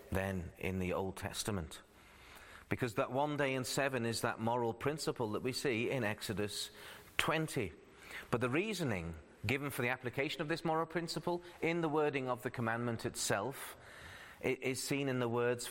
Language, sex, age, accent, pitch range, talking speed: English, male, 40-59, British, 100-135 Hz, 170 wpm